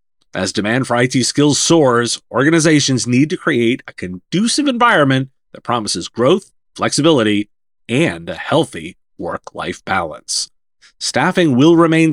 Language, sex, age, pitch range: English, male, 30-49, 125-185 Hz